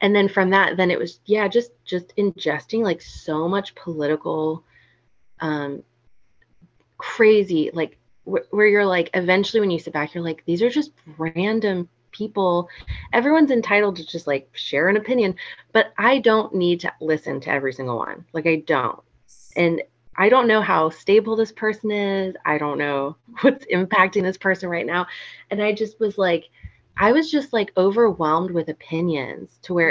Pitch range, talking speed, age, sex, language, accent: 155-200 Hz, 175 wpm, 20-39, female, English, American